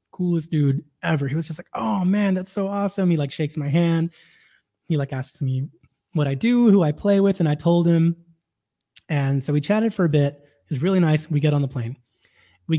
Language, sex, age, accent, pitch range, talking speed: English, male, 20-39, American, 135-170 Hz, 230 wpm